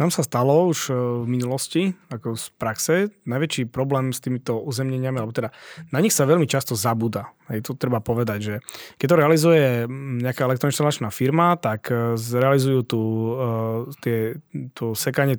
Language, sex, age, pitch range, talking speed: Slovak, male, 20-39, 120-145 Hz, 155 wpm